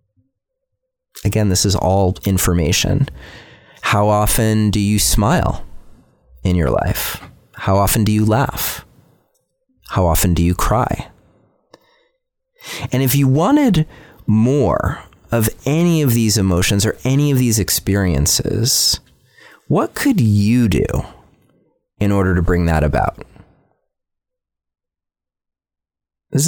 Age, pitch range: 30-49, 90-130 Hz